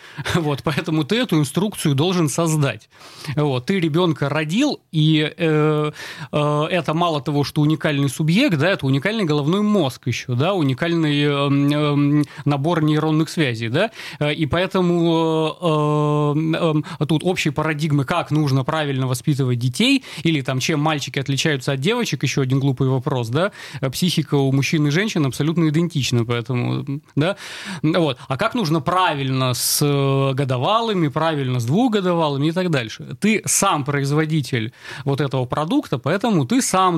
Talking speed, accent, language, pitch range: 145 wpm, native, Russian, 140-175 Hz